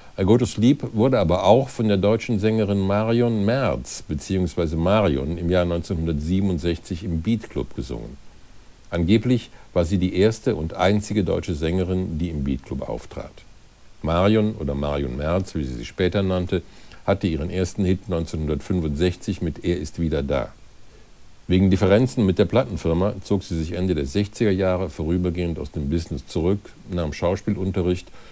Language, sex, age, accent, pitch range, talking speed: German, male, 60-79, German, 80-100 Hz, 150 wpm